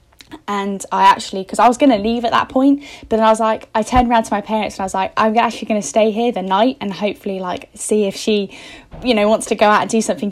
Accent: British